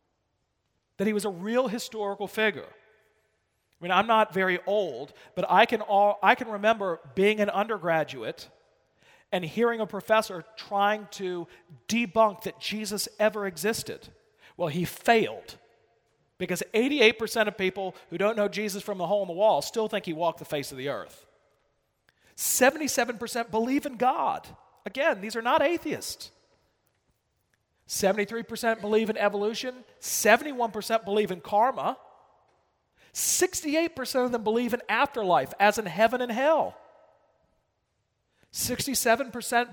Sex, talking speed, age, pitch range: male, 130 wpm, 40-59, 200-235 Hz